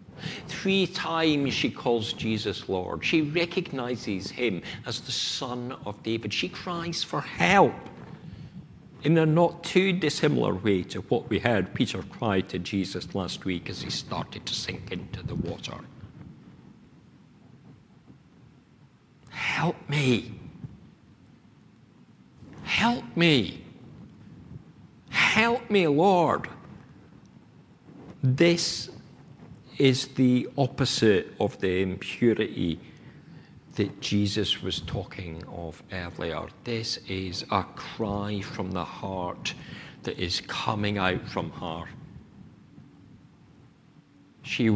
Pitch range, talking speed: 105-160 Hz, 100 wpm